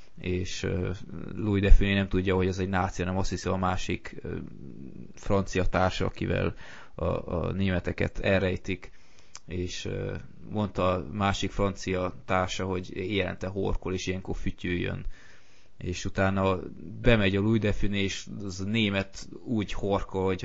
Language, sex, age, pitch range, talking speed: Hungarian, male, 20-39, 90-100 Hz, 140 wpm